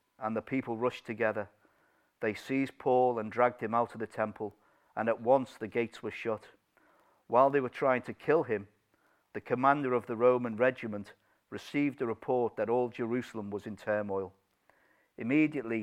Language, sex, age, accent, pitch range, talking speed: English, male, 50-69, British, 105-130 Hz, 170 wpm